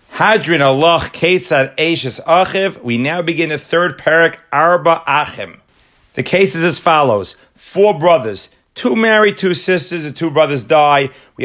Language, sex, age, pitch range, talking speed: English, male, 40-59, 140-180 Hz, 150 wpm